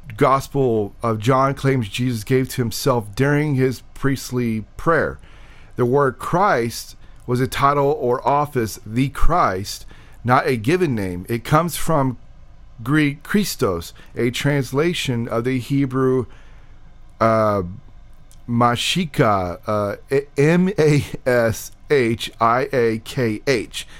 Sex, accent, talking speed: male, American, 100 wpm